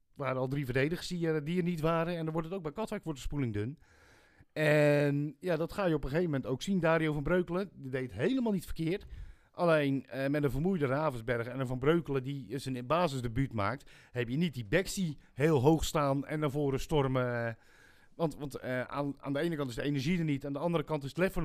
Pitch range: 130-165 Hz